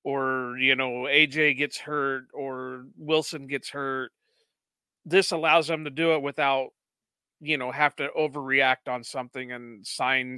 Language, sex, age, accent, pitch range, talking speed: English, male, 40-59, American, 135-160 Hz, 150 wpm